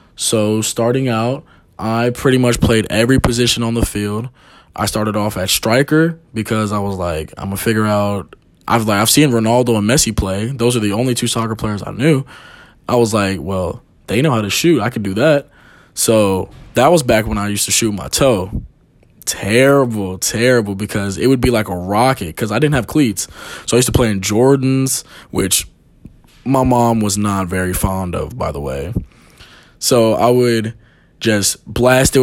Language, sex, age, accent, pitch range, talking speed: English, male, 20-39, American, 105-130 Hz, 195 wpm